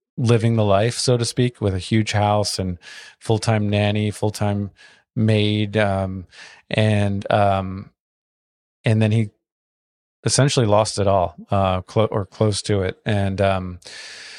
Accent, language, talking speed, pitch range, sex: American, English, 140 wpm, 100-115 Hz, male